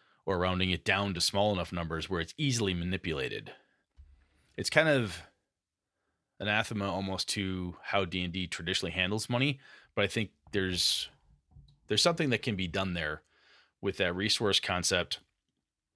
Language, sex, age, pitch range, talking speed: English, male, 30-49, 85-110 Hz, 145 wpm